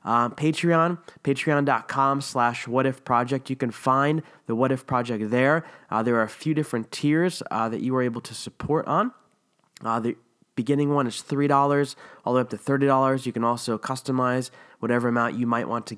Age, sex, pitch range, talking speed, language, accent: 20-39, male, 120-150 Hz, 190 wpm, English, American